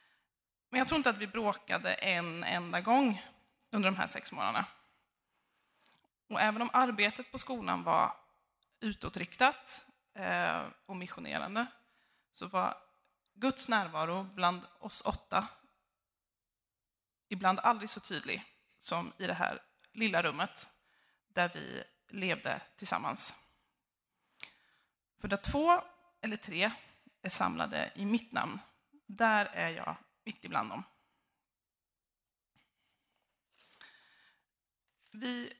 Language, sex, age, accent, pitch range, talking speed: Swedish, female, 20-39, native, 185-250 Hz, 105 wpm